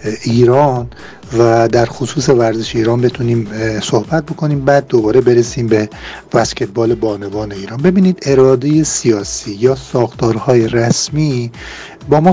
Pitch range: 110-135 Hz